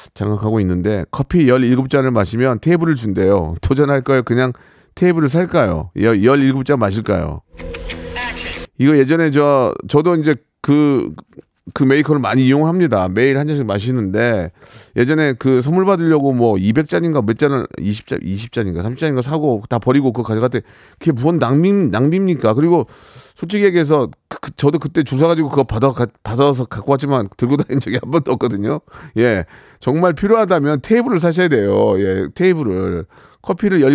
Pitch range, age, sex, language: 120-170 Hz, 40-59, male, Korean